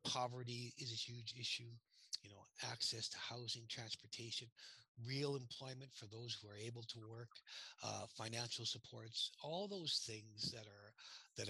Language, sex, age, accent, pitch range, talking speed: English, male, 60-79, American, 105-125 Hz, 150 wpm